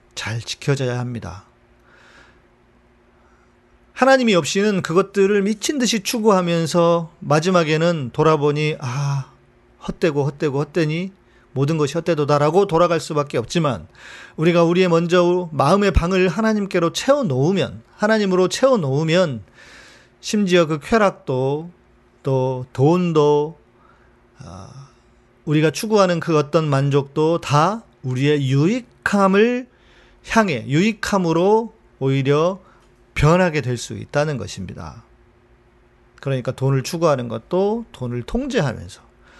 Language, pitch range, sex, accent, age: Korean, 130-185 Hz, male, native, 40-59